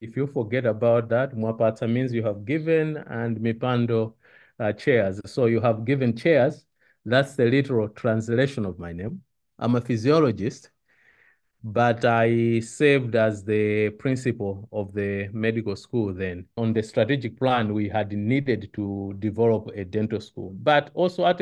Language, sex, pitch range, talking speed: English, male, 110-135 Hz, 155 wpm